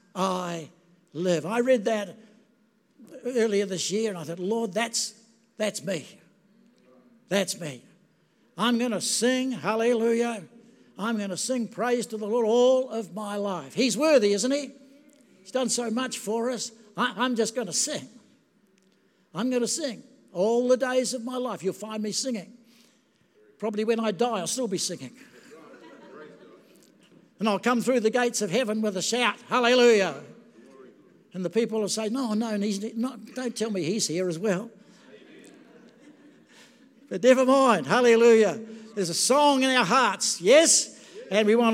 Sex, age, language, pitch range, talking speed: male, 60-79, English, 210-250 Hz, 155 wpm